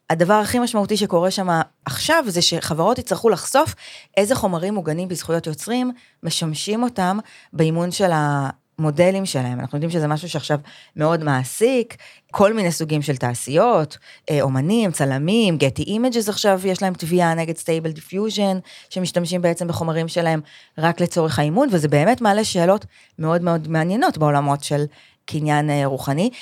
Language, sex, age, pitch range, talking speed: Hebrew, female, 30-49, 140-190 Hz, 135 wpm